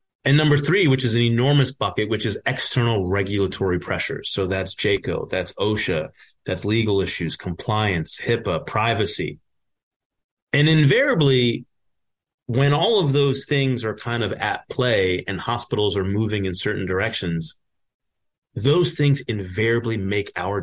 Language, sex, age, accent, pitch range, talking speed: English, male, 30-49, American, 100-130 Hz, 140 wpm